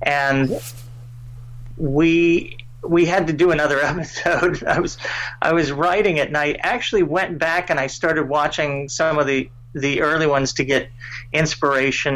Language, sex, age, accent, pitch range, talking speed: English, male, 40-59, American, 130-170 Hz, 160 wpm